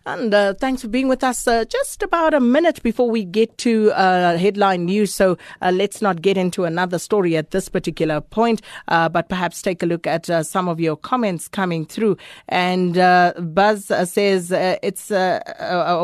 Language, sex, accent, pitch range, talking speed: English, female, South African, 170-205 Hz, 195 wpm